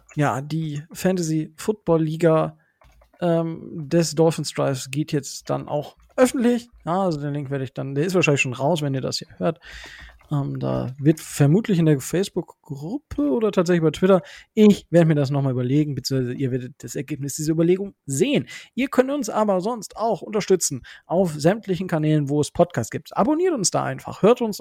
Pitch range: 145-200 Hz